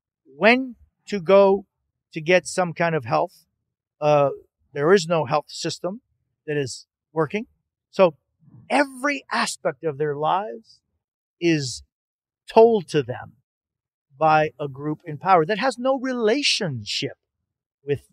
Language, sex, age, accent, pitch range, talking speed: English, male, 40-59, American, 140-195 Hz, 125 wpm